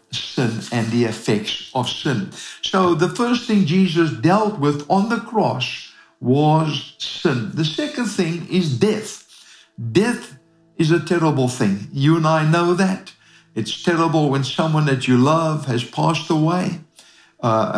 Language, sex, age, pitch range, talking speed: English, male, 60-79, 140-200 Hz, 150 wpm